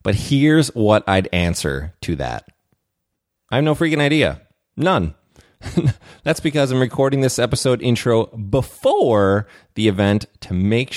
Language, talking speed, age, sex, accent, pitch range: English, 135 wpm, 30-49, male, American, 90-130 Hz